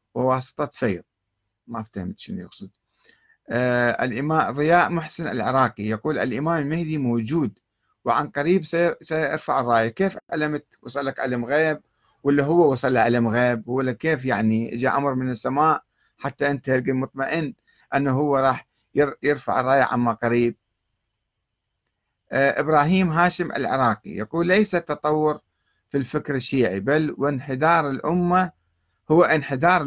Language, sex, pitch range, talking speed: Arabic, male, 120-165 Hz, 130 wpm